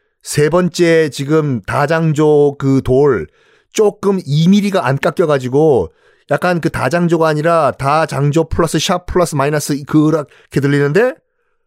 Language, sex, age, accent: Korean, male, 40-59, native